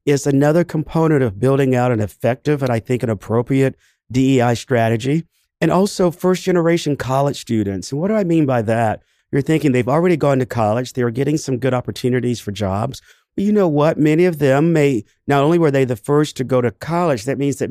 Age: 50-69